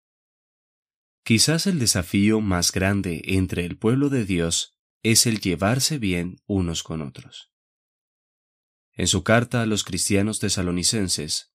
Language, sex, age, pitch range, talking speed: Spanish, male, 20-39, 90-120 Hz, 125 wpm